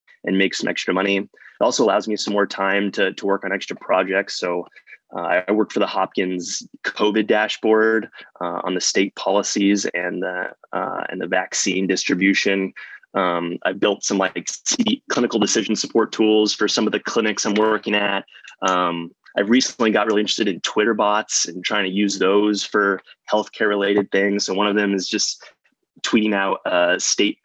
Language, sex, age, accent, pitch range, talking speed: English, male, 20-39, American, 95-105 Hz, 185 wpm